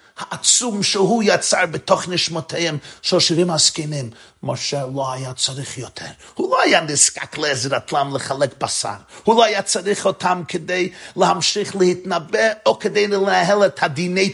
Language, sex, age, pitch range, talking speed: Hebrew, male, 50-69, 120-195 Hz, 140 wpm